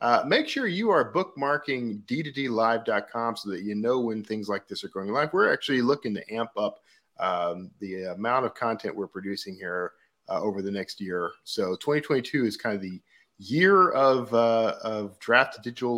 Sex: male